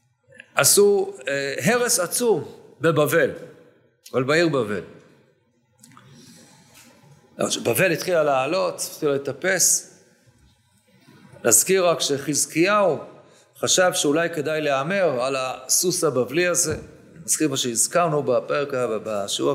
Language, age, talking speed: Hebrew, 50-69, 90 wpm